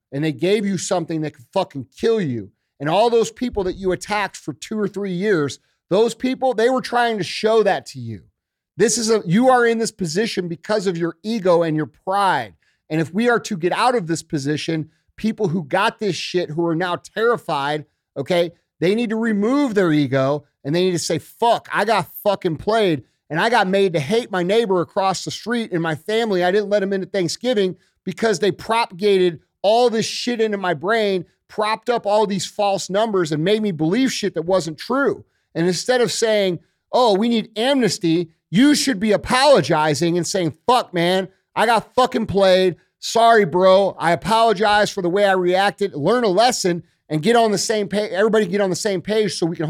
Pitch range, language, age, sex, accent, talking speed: 165-220 Hz, English, 40-59, male, American, 210 wpm